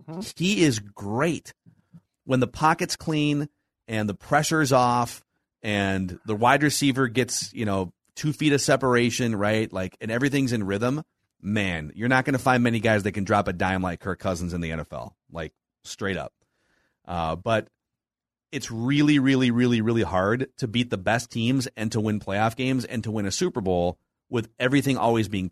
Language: English